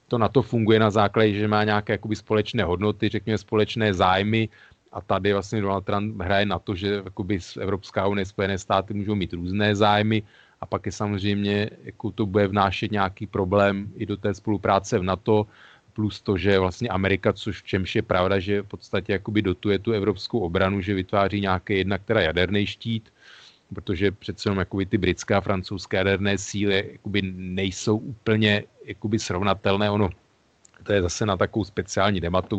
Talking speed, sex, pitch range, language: 175 wpm, male, 95-105 Hz, Slovak